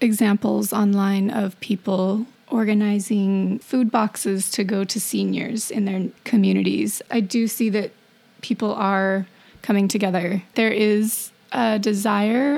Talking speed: 125 wpm